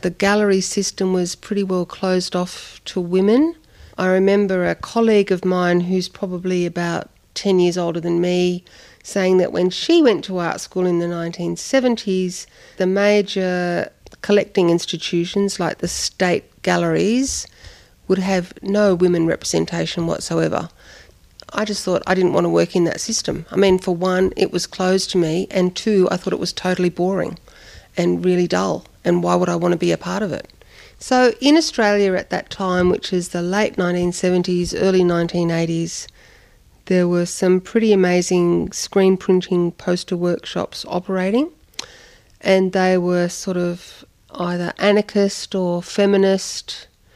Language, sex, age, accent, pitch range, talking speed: English, female, 50-69, Australian, 175-200 Hz, 155 wpm